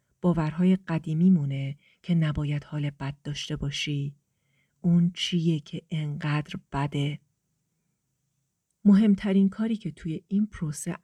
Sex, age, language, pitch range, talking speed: female, 40-59, Persian, 150-185 Hz, 110 wpm